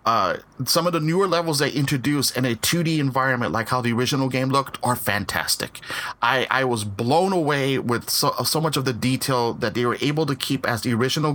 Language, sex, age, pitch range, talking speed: English, male, 30-49, 120-155 Hz, 215 wpm